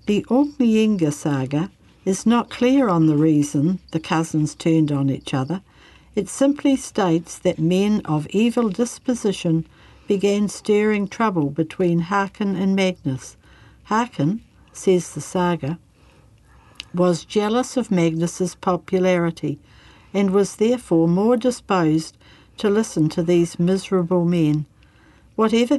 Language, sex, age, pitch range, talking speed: English, female, 60-79, 160-200 Hz, 120 wpm